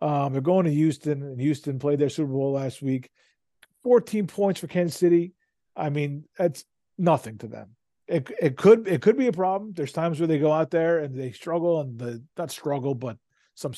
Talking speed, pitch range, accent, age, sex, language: 210 wpm, 130-165 Hz, American, 40-59, male, English